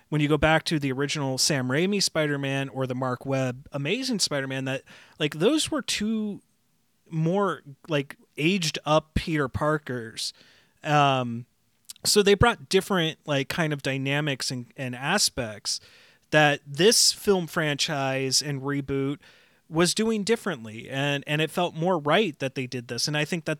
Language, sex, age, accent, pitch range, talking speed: English, male, 30-49, American, 135-165 Hz, 160 wpm